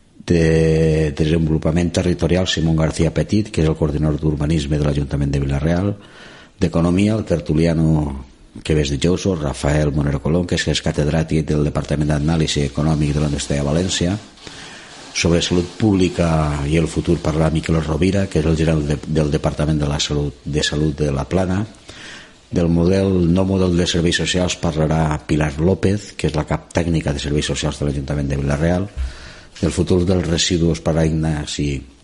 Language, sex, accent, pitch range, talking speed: Spanish, male, Spanish, 75-85 Hz, 165 wpm